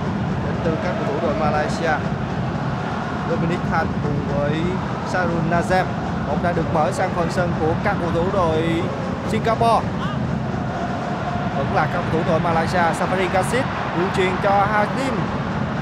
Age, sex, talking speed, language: 20-39, male, 145 wpm, Vietnamese